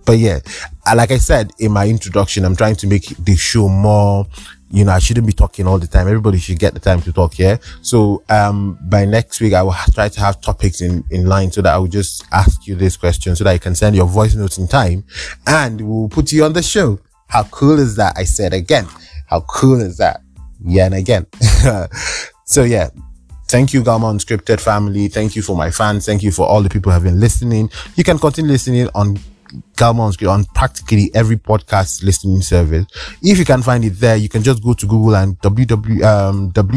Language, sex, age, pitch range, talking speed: English, male, 20-39, 90-110 Hz, 220 wpm